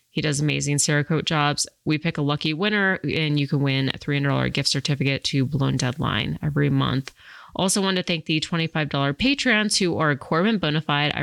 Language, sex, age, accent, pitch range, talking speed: English, female, 20-39, American, 145-170 Hz, 180 wpm